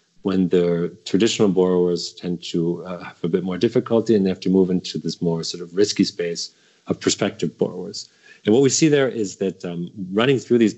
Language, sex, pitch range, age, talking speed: English, male, 90-105 Hz, 40-59, 210 wpm